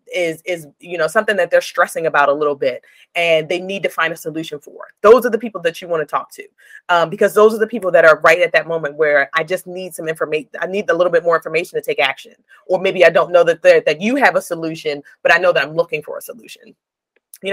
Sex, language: female, English